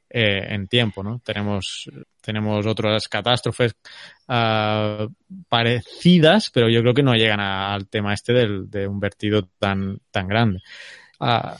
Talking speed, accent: 145 wpm, Spanish